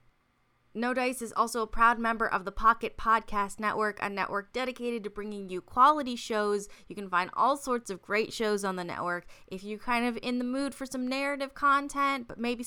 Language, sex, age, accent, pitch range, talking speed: English, female, 20-39, American, 195-245 Hz, 210 wpm